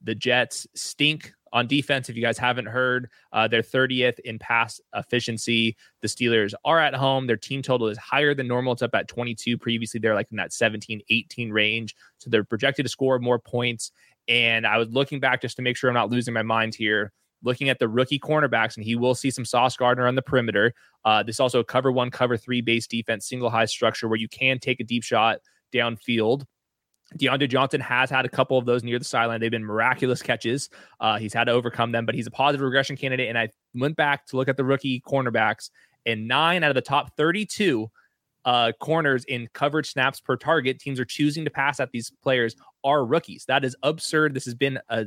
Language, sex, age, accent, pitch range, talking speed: English, male, 20-39, American, 115-135 Hz, 225 wpm